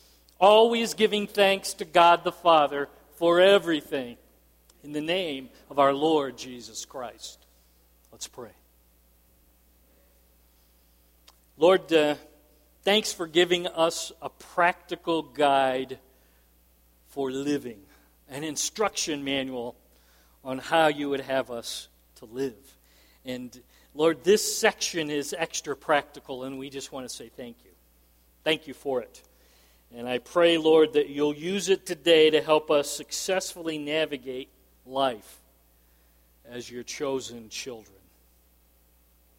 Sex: male